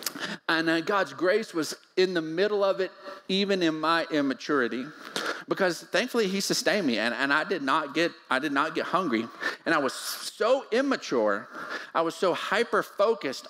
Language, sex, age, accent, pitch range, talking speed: English, male, 40-59, American, 135-185 Hz, 170 wpm